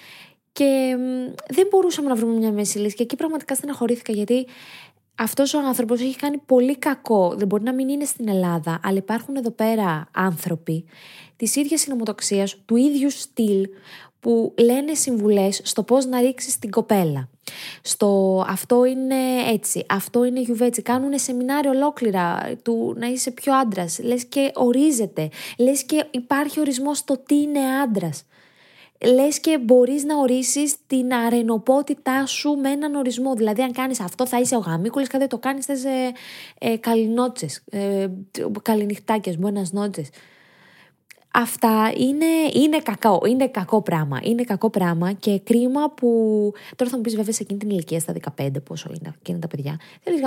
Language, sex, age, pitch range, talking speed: Greek, female, 20-39, 195-260 Hz, 160 wpm